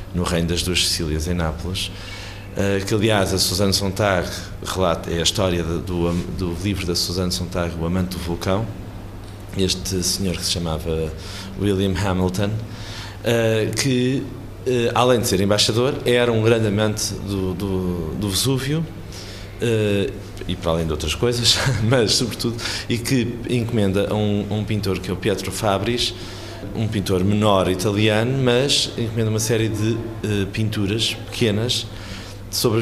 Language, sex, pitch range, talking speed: Portuguese, male, 90-110 Hz, 145 wpm